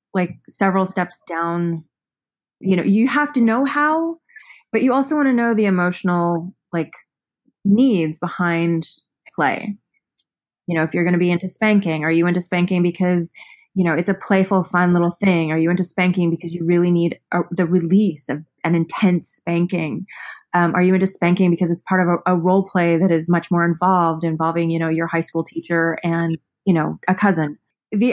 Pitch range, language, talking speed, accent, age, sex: 170-210 Hz, English, 195 wpm, American, 20-39, female